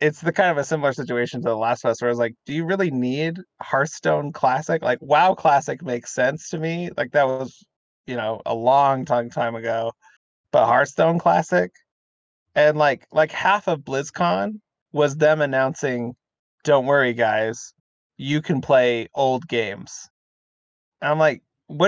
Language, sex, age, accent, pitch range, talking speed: English, male, 30-49, American, 120-150 Hz, 175 wpm